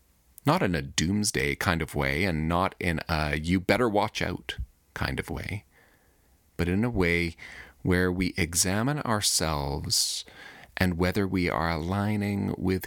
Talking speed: 135 wpm